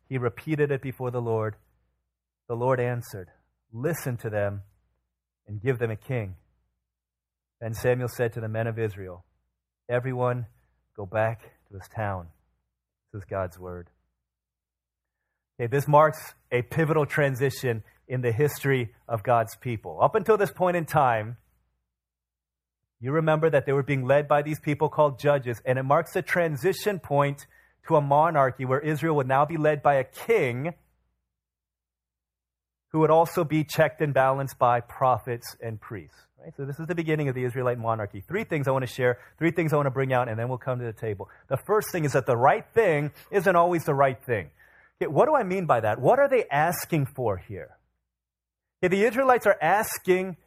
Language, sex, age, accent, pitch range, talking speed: English, male, 30-49, American, 95-150 Hz, 180 wpm